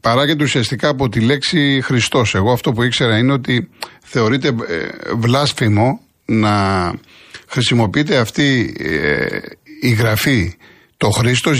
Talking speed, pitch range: 110 wpm, 115-160 Hz